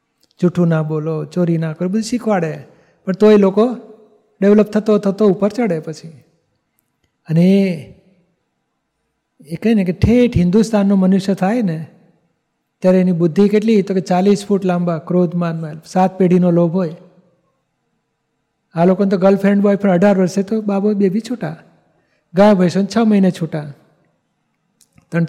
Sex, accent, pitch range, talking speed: male, native, 170-205 Hz, 145 wpm